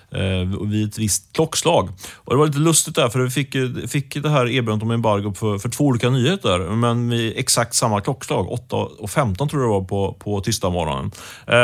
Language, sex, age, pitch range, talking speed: Swedish, male, 30-49, 105-135 Hz, 195 wpm